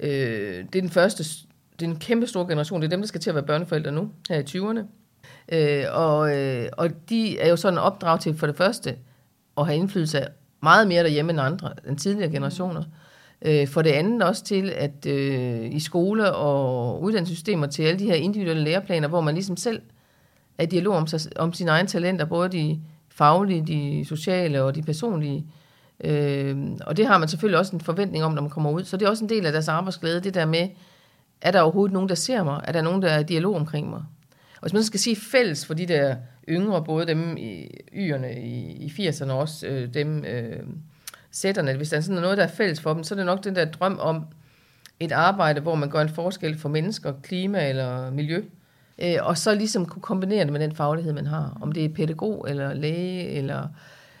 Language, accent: Danish, native